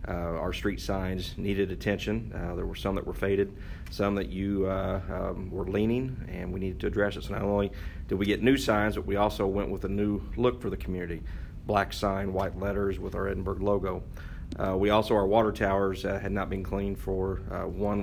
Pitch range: 95-105 Hz